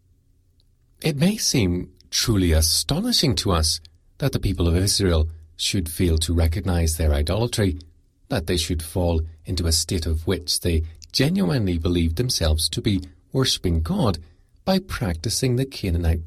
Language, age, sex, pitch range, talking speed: English, 40-59, male, 85-105 Hz, 145 wpm